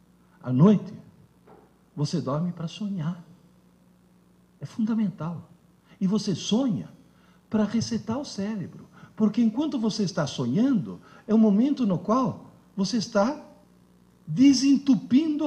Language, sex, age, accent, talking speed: Portuguese, male, 60-79, Brazilian, 110 wpm